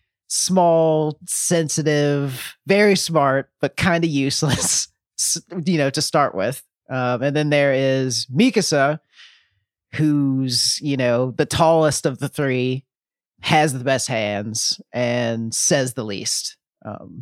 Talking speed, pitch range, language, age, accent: 125 wpm, 125-155 Hz, English, 30-49, American